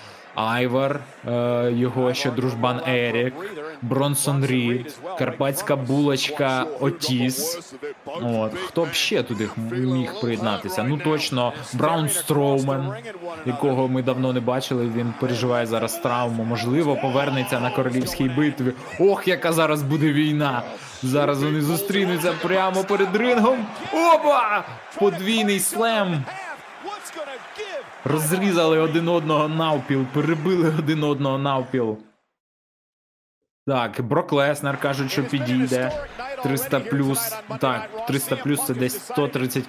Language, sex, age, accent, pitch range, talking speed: Ukrainian, male, 20-39, native, 125-165 Hz, 105 wpm